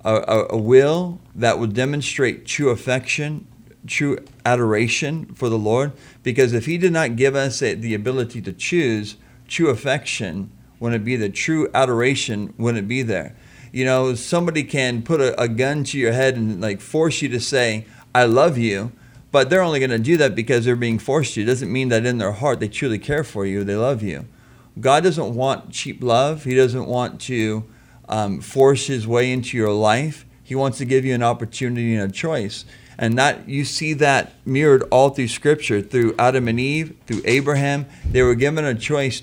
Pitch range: 115-135 Hz